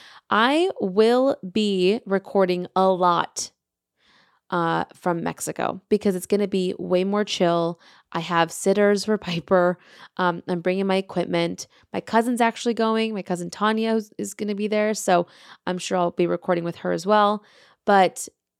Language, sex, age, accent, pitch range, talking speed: English, female, 20-39, American, 180-210 Hz, 160 wpm